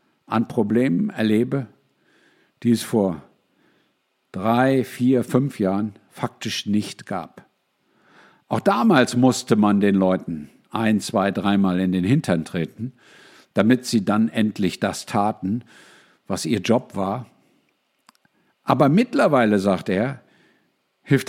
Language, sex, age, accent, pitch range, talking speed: German, male, 50-69, German, 95-130 Hz, 115 wpm